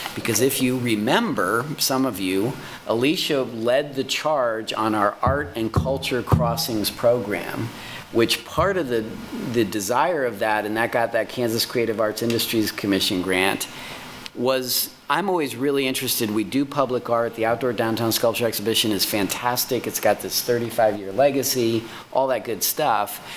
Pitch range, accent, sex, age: 105-125 Hz, American, male, 40-59